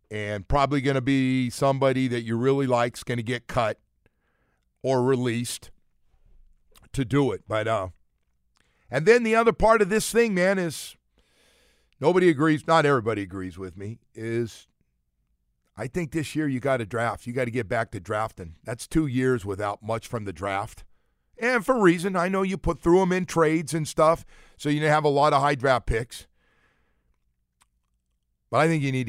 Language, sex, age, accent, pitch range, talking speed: English, male, 50-69, American, 105-135 Hz, 180 wpm